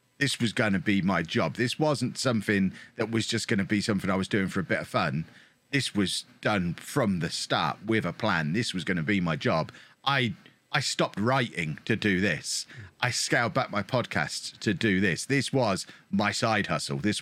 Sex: male